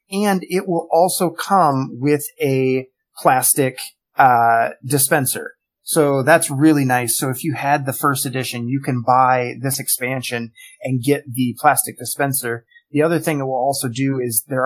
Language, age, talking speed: English, 30-49, 165 wpm